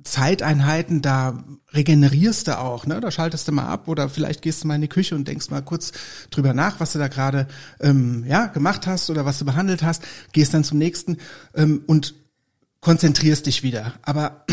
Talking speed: 200 wpm